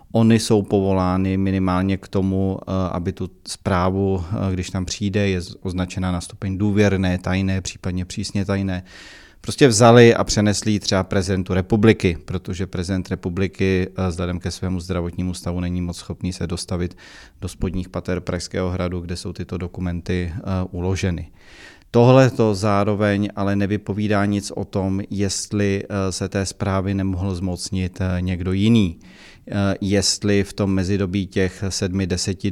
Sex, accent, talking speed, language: male, native, 135 wpm, Czech